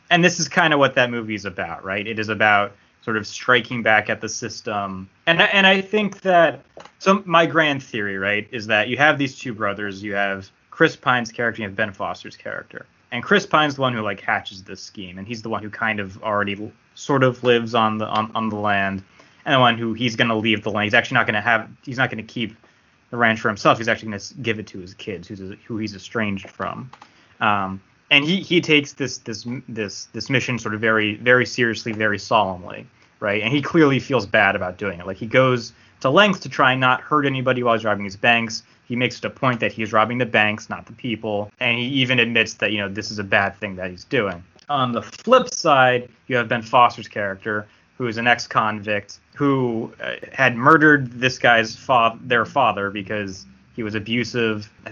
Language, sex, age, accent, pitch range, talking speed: English, male, 20-39, American, 105-125 Hz, 230 wpm